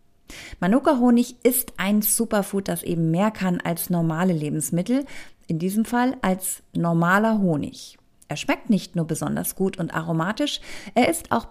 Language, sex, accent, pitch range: German, female, German, 170-230 Hz